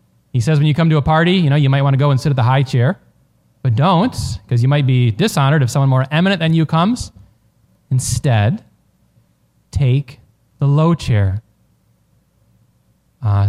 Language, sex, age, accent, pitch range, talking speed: English, male, 20-39, American, 120-175 Hz, 180 wpm